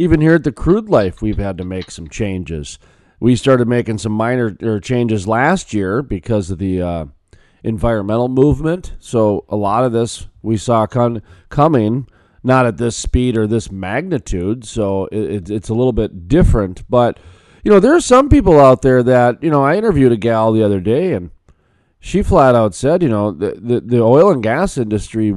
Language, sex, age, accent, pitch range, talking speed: English, male, 40-59, American, 100-135 Hz, 195 wpm